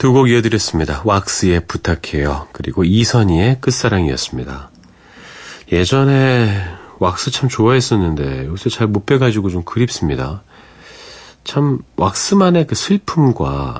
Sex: male